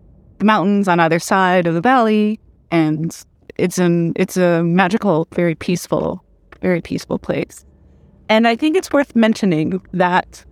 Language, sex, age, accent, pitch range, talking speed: English, female, 30-49, American, 165-190 Hz, 145 wpm